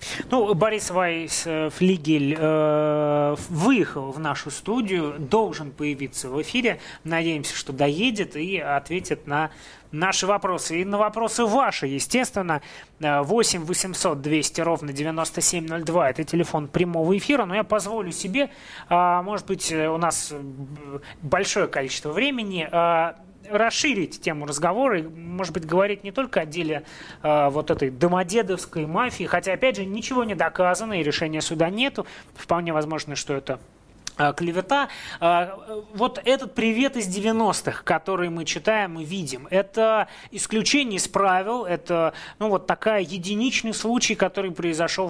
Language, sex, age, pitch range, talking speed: Russian, male, 20-39, 155-210 Hz, 135 wpm